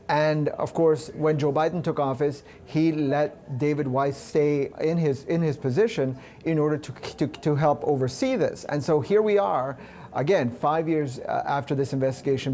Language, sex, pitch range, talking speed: English, male, 135-155 Hz, 175 wpm